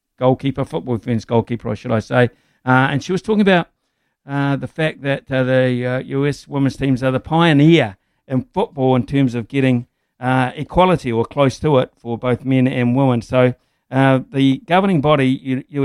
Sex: male